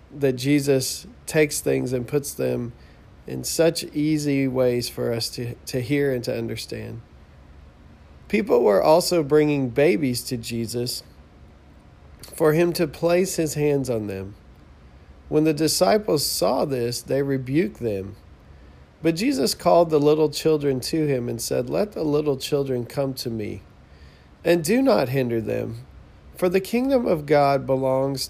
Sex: male